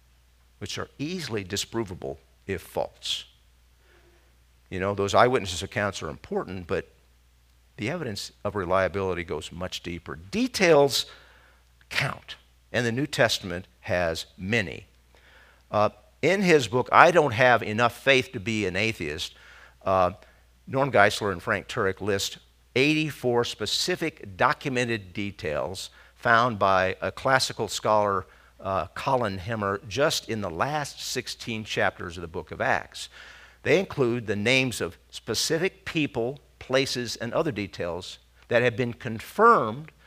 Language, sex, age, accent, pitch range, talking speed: English, male, 50-69, American, 90-125 Hz, 130 wpm